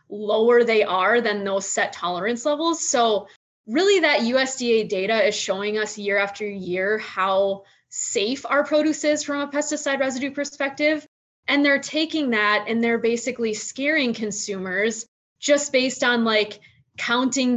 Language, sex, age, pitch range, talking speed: English, female, 20-39, 200-255 Hz, 145 wpm